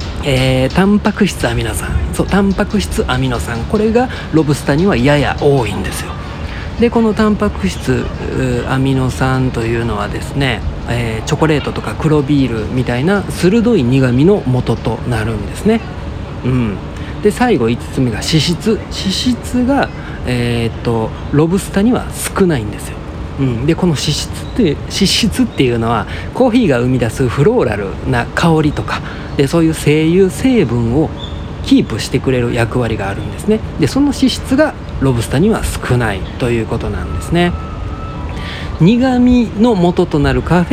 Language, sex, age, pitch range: Japanese, male, 40-59, 115-190 Hz